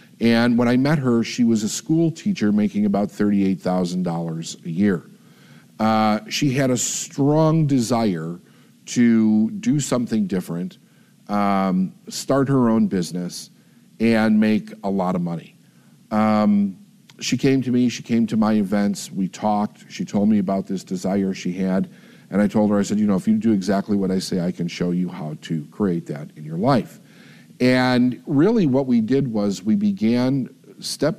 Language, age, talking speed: English, 50-69, 175 wpm